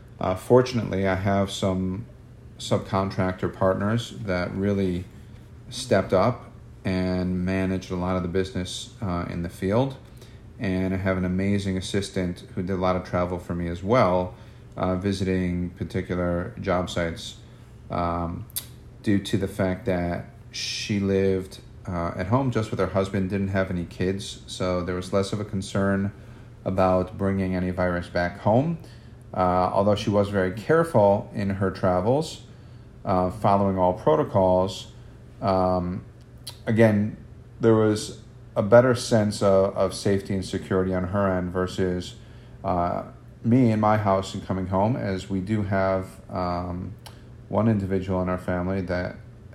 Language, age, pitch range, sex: English, 40-59, 90-115 Hz, male